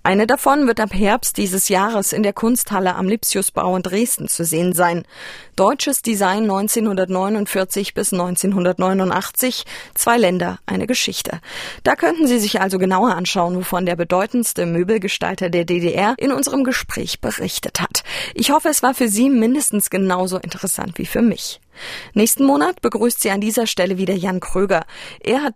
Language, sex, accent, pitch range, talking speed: German, female, German, 185-230 Hz, 160 wpm